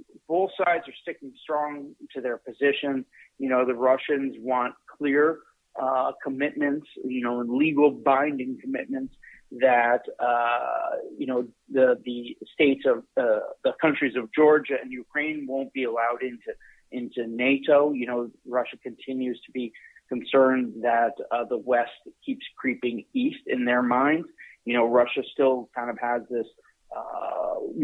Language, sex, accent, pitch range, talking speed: English, male, American, 120-155 Hz, 150 wpm